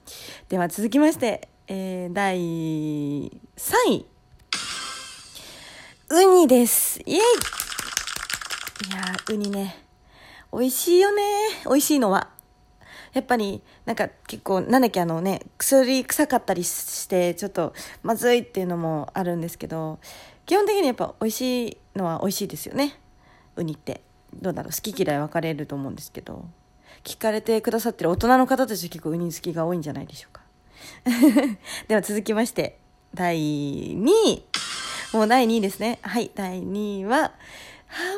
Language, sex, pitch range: Japanese, female, 180-270 Hz